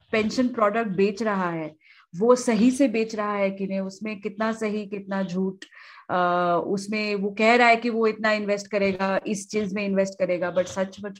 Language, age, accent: Hindi, 30-49, native